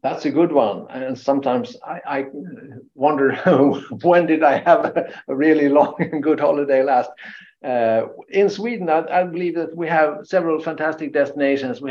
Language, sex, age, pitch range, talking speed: English, male, 50-69, 130-155 Hz, 165 wpm